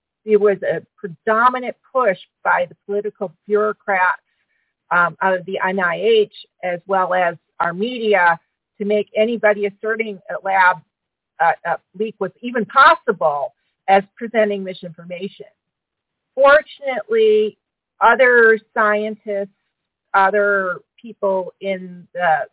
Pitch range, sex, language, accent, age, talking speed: 190-230 Hz, female, English, American, 50-69, 110 wpm